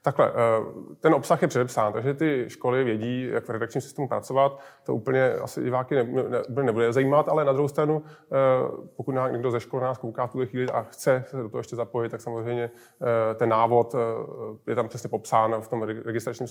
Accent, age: native, 20-39